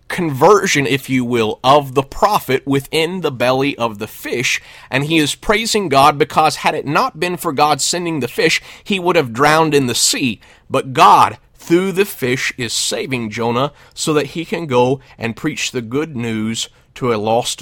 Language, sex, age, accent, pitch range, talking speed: English, male, 30-49, American, 115-150 Hz, 190 wpm